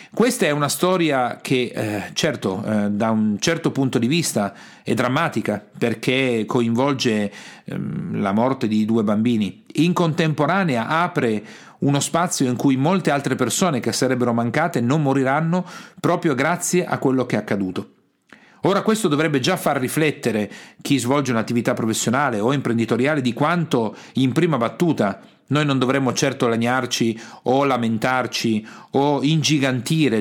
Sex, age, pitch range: male, 40-59, 120-170 Hz